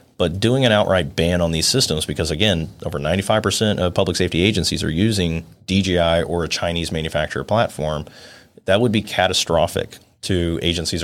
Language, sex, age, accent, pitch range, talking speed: English, male, 30-49, American, 80-95 Hz, 170 wpm